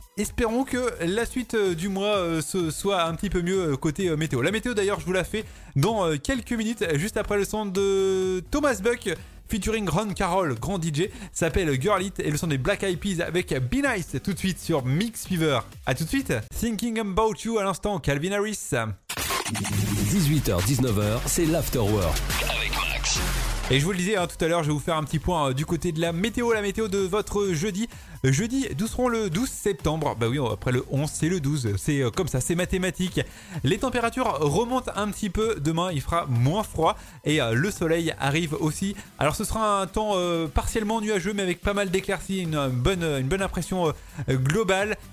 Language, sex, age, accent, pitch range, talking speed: French, male, 30-49, French, 145-200 Hz, 205 wpm